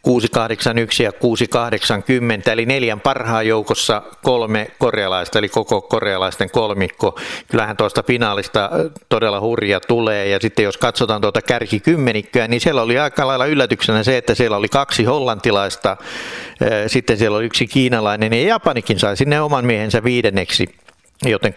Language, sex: Finnish, male